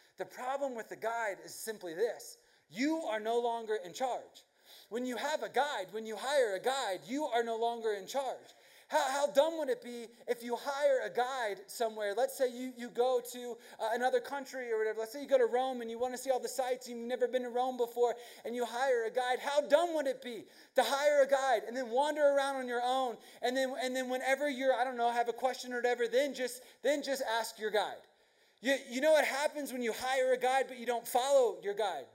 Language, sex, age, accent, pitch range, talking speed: English, male, 30-49, American, 220-270 Hz, 245 wpm